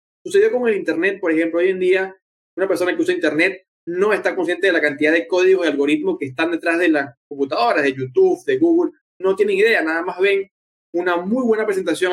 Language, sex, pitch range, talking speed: Spanish, male, 165-270 Hz, 220 wpm